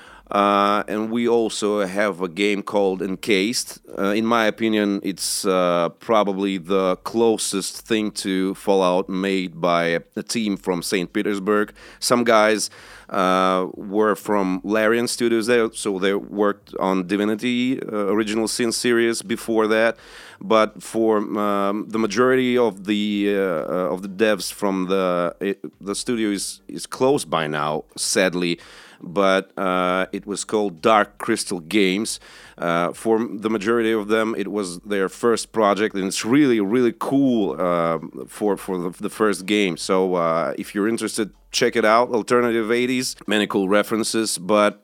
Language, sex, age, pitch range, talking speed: English, male, 30-49, 95-110 Hz, 150 wpm